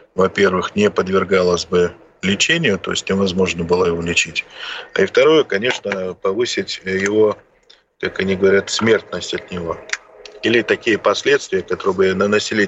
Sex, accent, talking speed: male, native, 135 wpm